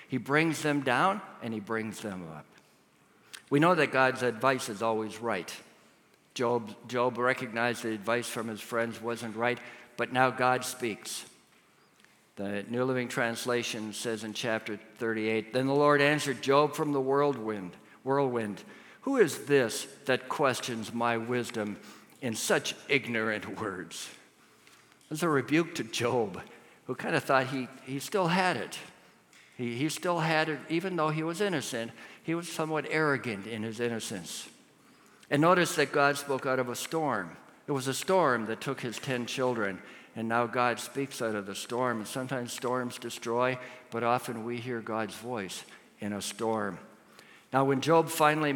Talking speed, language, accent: 165 wpm, English, American